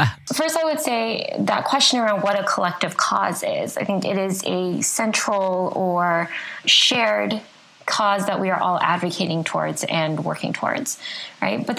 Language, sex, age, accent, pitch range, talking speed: English, female, 20-39, American, 180-220 Hz, 165 wpm